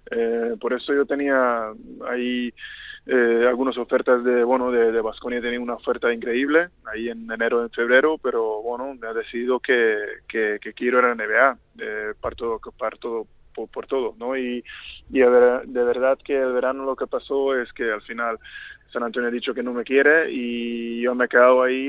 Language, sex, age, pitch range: Spanish, male, 20-39, 120-135 Hz